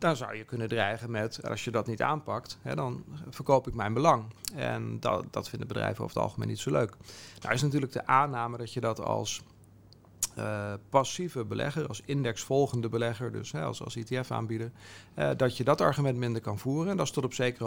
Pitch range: 110-135 Hz